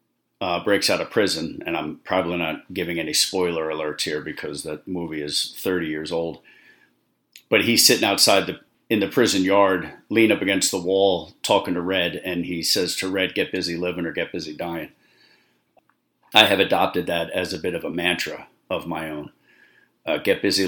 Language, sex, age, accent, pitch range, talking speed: English, male, 40-59, American, 85-115 Hz, 190 wpm